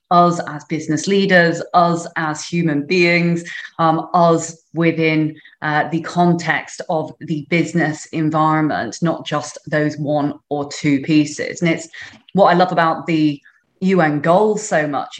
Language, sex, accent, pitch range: English, female, British, 155-175 Hz